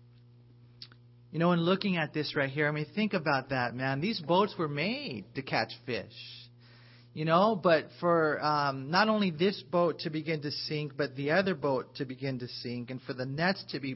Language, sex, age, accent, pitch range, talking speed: English, male, 40-59, American, 120-150 Hz, 205 wpm